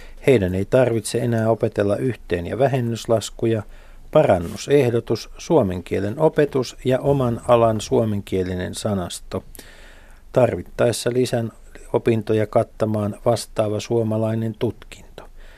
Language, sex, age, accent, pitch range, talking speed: Finnish, male, 50-69, native, 100-125 Hz, 90 wpm